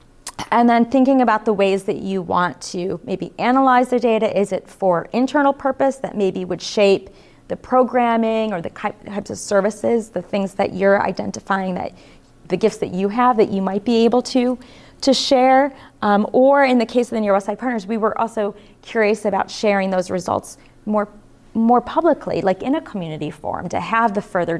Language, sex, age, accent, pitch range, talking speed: English, female, 30-49, American, 195-245 Hz, 195 wpm